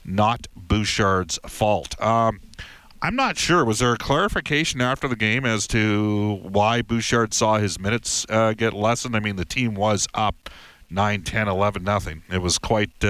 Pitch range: 90-110 Hz